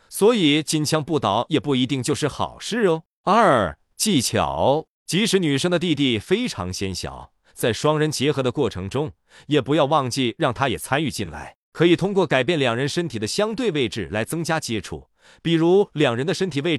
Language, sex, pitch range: Chinese, male, 125-170 Hz